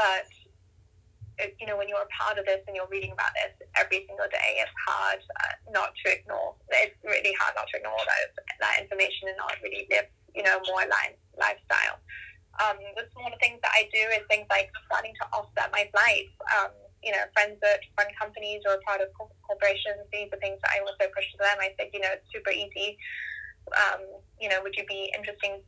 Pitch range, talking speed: 195-220 Hz, 210 wpm